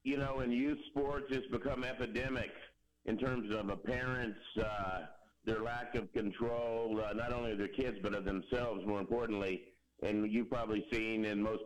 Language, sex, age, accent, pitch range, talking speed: English, male, 50-69, American, 105-135 Hz, 180 wpm